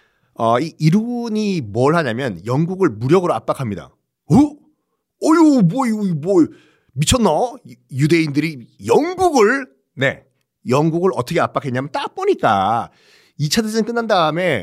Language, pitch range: Korean, 135-205 Hz